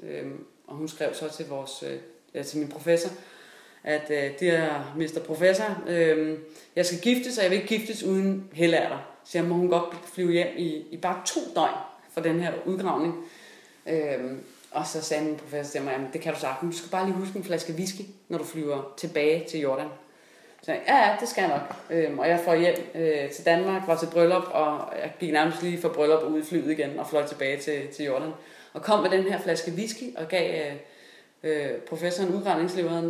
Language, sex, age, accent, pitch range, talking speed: Danish, female, 30-49, native, 155-180 Hz, 220 wpm